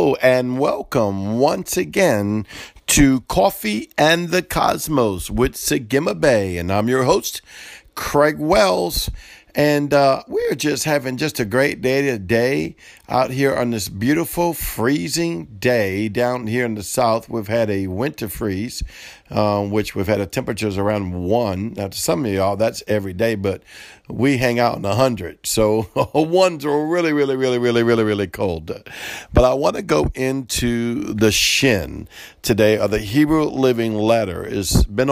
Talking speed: 165 wpm